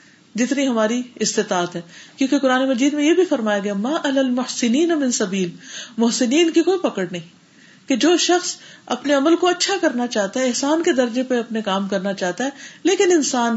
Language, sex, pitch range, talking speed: Urdu, female, 185-260 Hz, 185 wpm